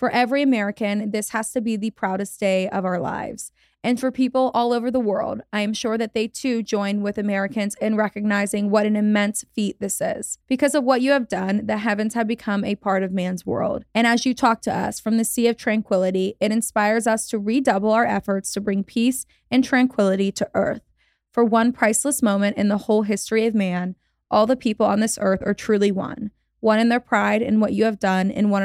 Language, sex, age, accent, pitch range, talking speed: English, female, 20-39, American, 205-235 Hz, 225 wpm